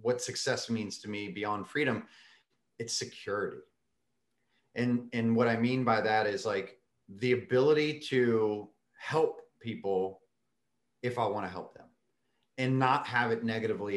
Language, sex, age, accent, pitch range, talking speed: English, male, 30-49, American, 110-135 Hz, 145 wpm